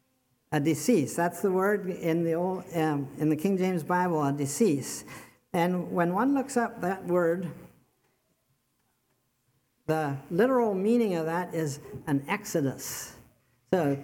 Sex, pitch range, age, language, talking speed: male, 155-205 Hz, 50-69, English, 130 wpm